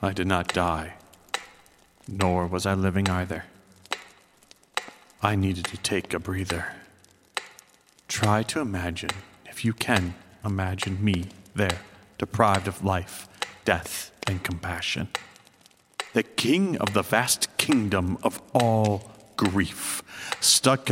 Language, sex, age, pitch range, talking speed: English, male, 40-59, 95-115 Hz, 115 wpm